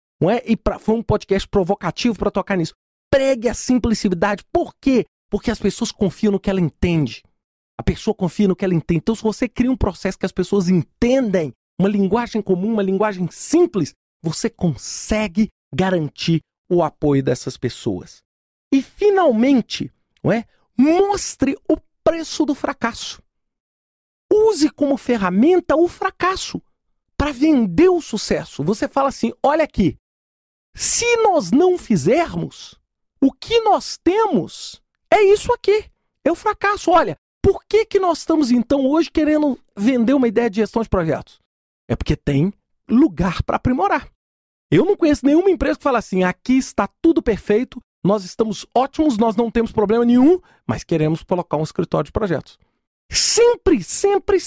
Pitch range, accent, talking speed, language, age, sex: 200-315 Hz, Brazilian, 150 wpm, Portuguese, 40-59, male